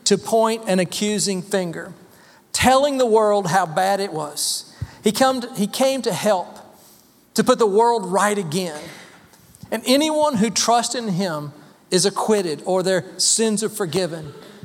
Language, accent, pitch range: English, American, 175-225 Hz